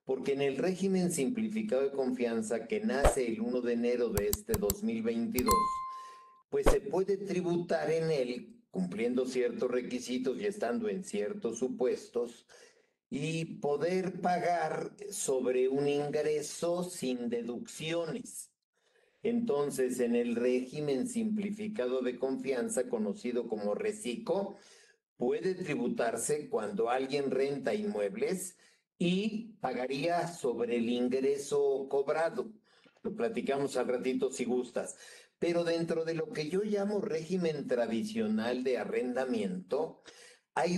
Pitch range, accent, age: 130-215 Hz, Mexican, 50-69